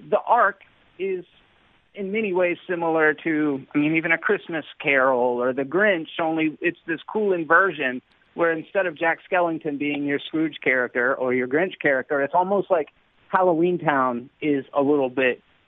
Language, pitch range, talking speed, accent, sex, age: English, 125-165 Hz, 170 wpm, American, male, 30-49